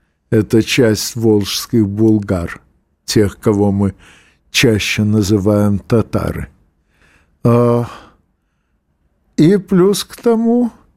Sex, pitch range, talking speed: male, 110-140 Hz, 75 wpm